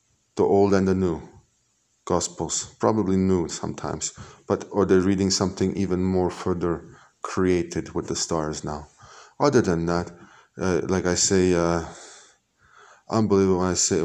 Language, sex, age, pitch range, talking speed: Hebrew, male, 20-39, 85-95 Hz, 145 wpm